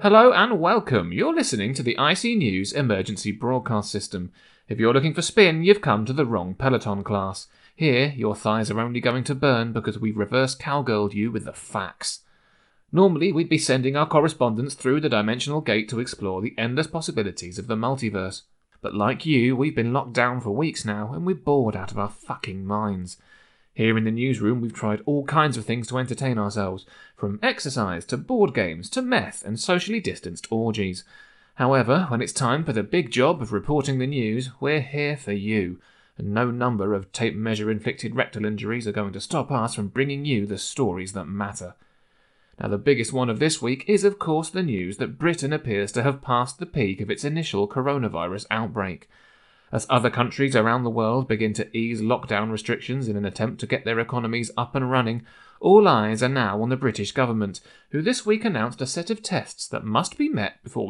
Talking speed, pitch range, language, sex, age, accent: 200 wpm, 105-145 Hz, English, male, 30-49, British